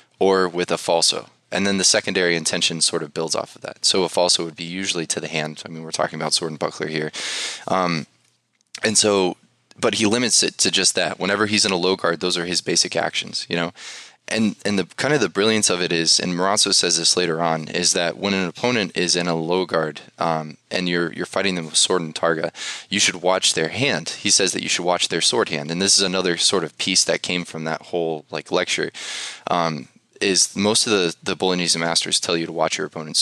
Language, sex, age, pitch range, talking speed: English, male, 20-39, 80-95 Hz, 240 wpm